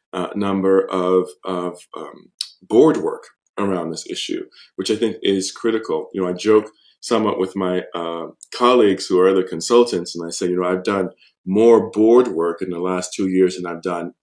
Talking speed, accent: 195 wpm, American